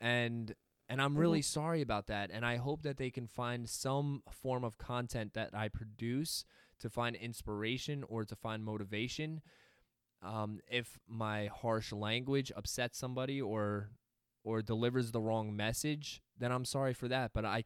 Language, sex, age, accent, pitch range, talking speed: English, male, 20-39, American, 110-130 Hz, 165 wpm